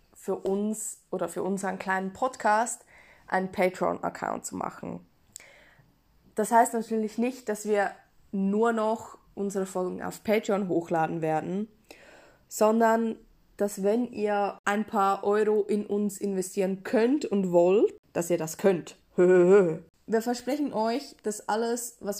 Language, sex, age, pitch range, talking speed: German, female, 20-39, 185-220 Hz, 130 wpm